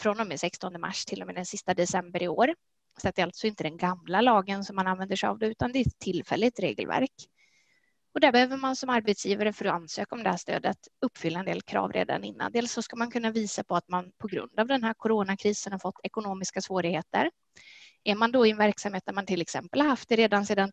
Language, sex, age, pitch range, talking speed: Swedish, female, 20-39, 190-235 Hz, 250 wpm